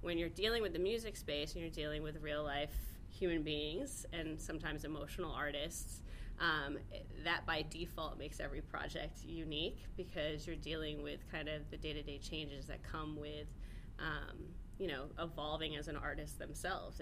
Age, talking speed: 20-39, 160 wpm